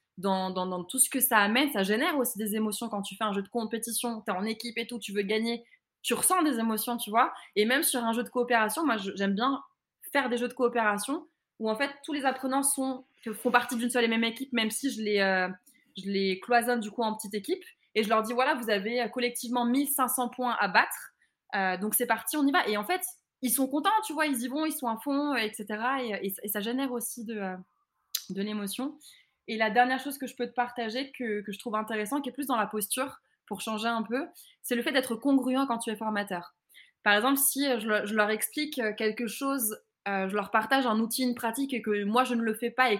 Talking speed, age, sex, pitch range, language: 255 wpm, 20-39, female, 215-270 Hz, French